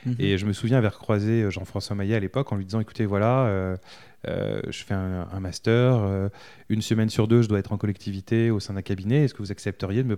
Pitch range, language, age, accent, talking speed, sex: 100-130 Hz, French, 20-39, French, 250 wpm, male